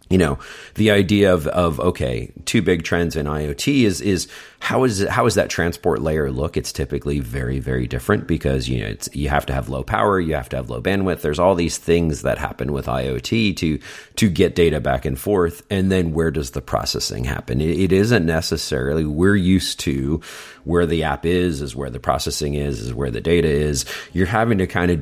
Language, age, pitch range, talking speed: English, 40-59, 70-90 Hz, 215 wpm